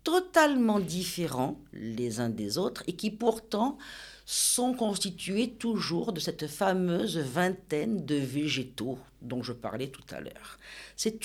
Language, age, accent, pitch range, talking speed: French, 50-69, French, 140-195 Hz, 135 wpm